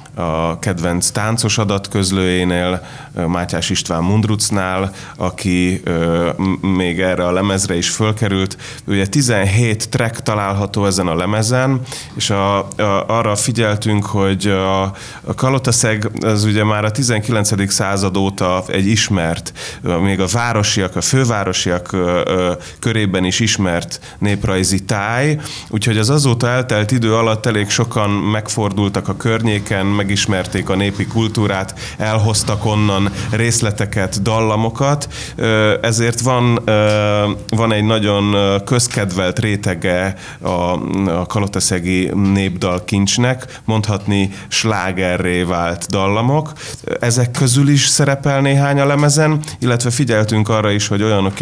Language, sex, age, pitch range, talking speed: Hungarian, male, 30-49, 95-115 Hz, 115 wpm